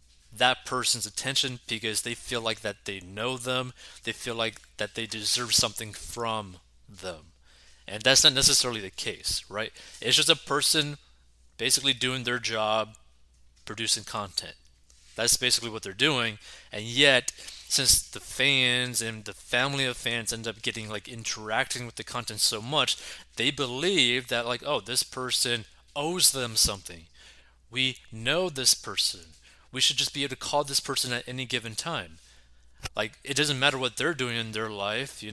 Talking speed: 170 wpm